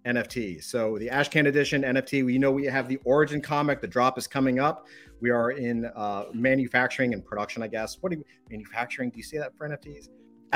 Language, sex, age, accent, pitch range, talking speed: English, male, 40-59, American, 125-160 Hz, 215 wpm